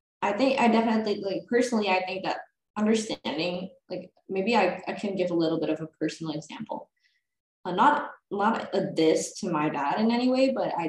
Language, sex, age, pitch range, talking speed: Indonesian, female, 10-29, 160-210 Hz, 205 wpm